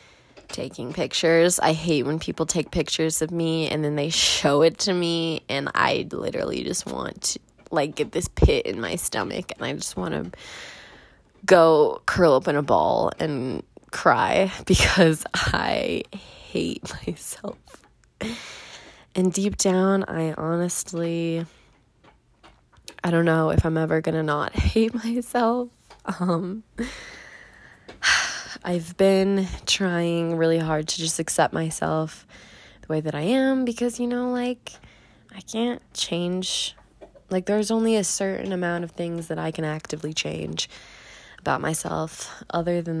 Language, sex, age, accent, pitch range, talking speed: English, female, 20-39, American, 160-195 Hz, 140 wpm